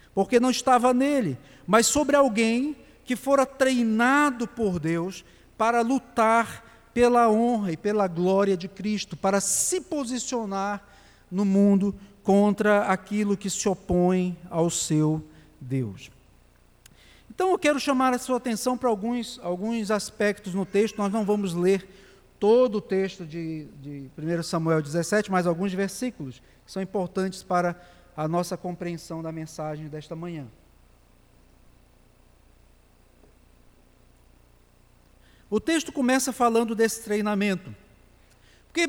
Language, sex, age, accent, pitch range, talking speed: Portuguese, male, 50-69, Brazilian, 180-235 Hz, 125 wpm